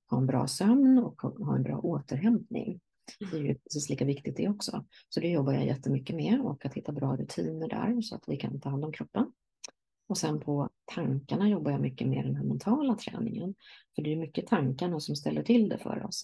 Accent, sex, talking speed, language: native, female, 225 wpm, Swedish